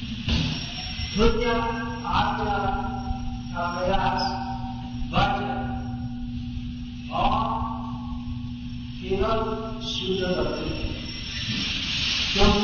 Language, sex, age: Hindi, male, 50-69